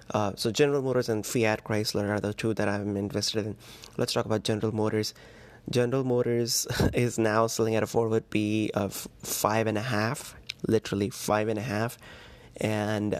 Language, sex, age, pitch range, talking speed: English, male, 20-39, 105-115 Hz, 175 wpm